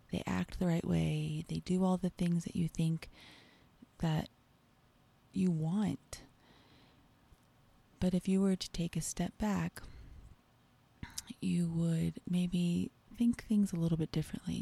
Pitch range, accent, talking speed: 155-180 Hz, American, 140 wpm